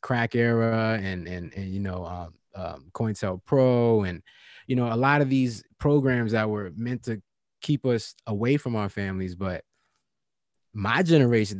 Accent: American